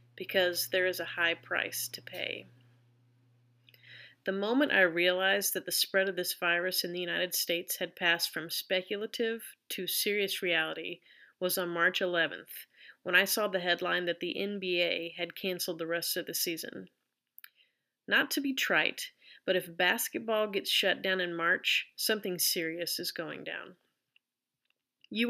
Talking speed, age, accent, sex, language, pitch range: 155 wpm, 30-49, American, female, English, 170-195 Hz